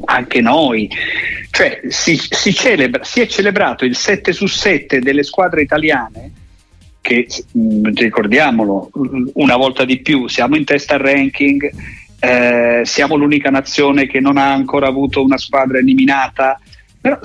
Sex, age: male, 50-69